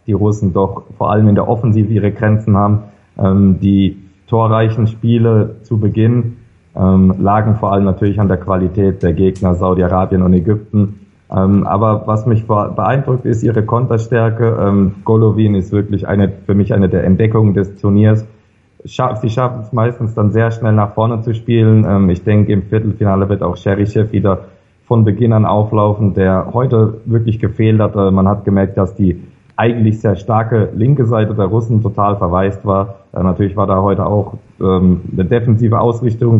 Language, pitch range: German, 95-110 Hz